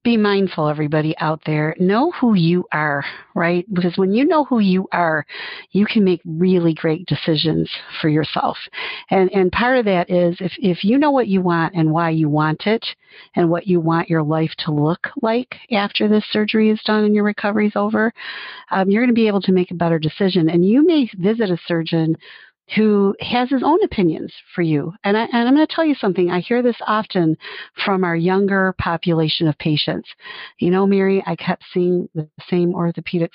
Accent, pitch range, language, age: American, 165-215 Hz, English, 50-69